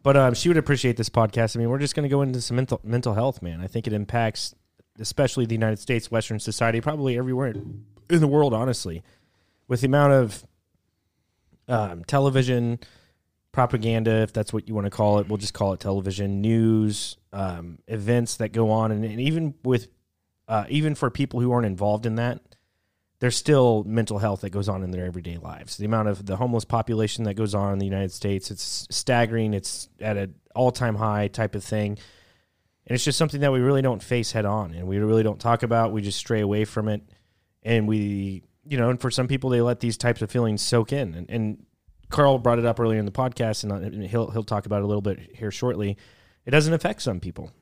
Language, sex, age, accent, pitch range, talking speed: English, male, 30-49, American, 100-120 Hz, 215 wpm